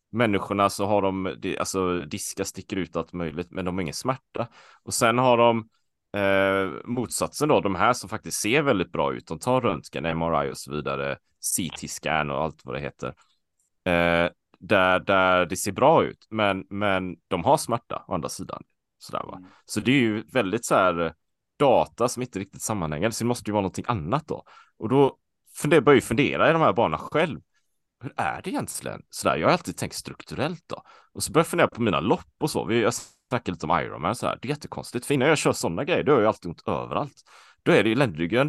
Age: 30-49